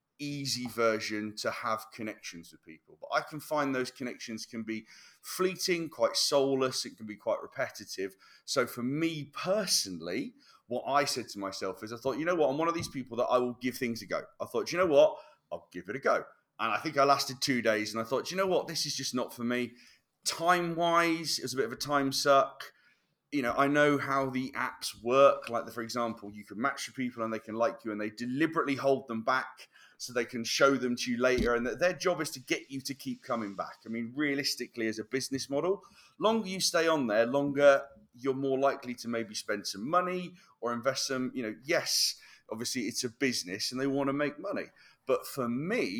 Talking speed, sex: 230 wpm, male